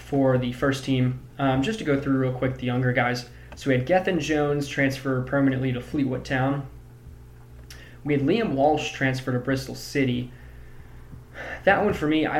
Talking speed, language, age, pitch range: 180 wpm, English, 20-39, 120-135 Hz